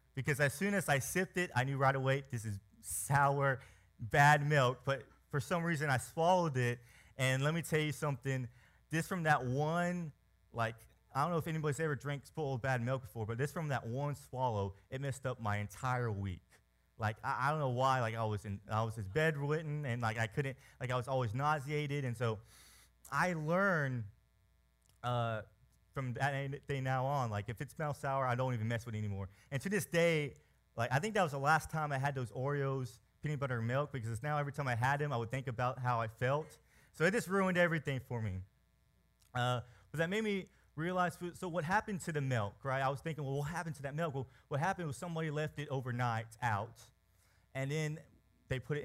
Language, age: English, 30-49